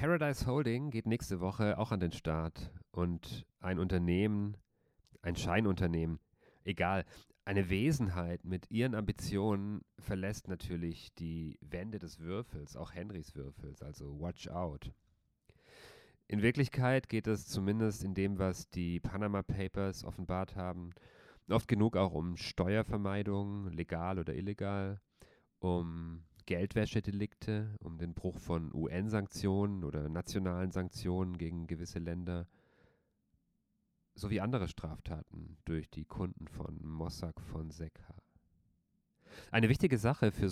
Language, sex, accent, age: German, male, German, 40-59